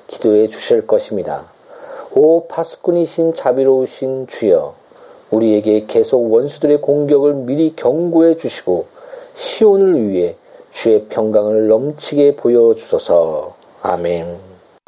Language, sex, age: Korean, male, 40-59